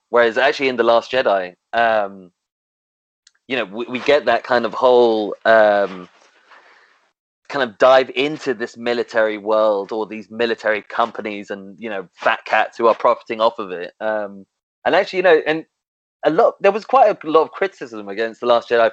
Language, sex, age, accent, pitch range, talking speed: English, male, 20-39, British, 105-130 Hz, 185 wpm